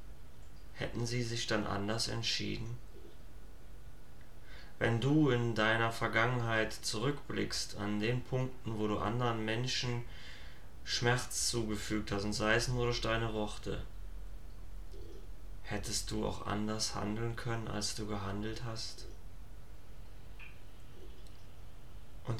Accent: German